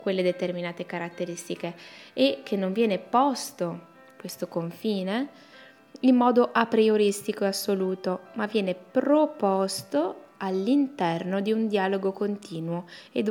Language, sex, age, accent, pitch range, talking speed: Italian, female, 20-39, native, 185-230 Hz, 115 wpm